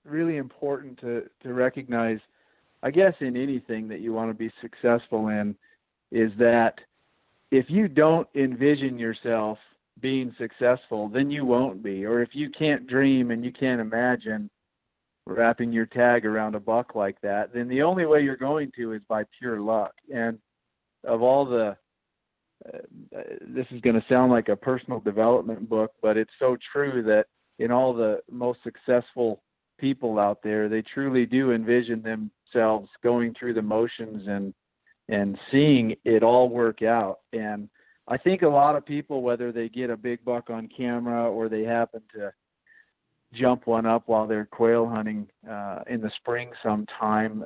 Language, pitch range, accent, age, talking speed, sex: English, 110-130 Hz, American, 40-59, 165 wpm, male